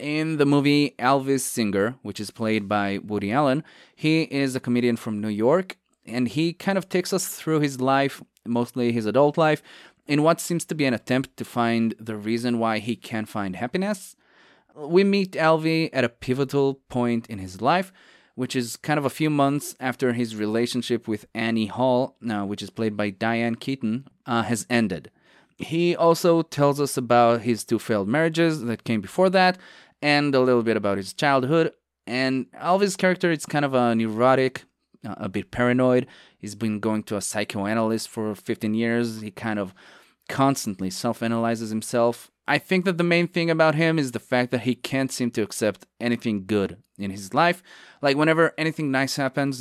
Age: 30-49